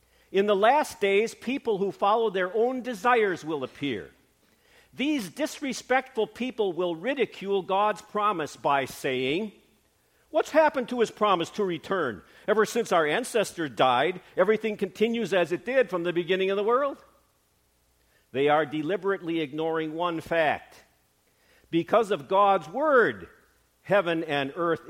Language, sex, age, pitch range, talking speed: English, male, 50-69, 155-220 Hz, 135 wpm